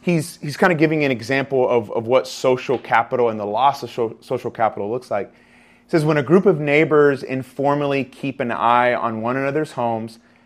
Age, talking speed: 30-49, 200 wpm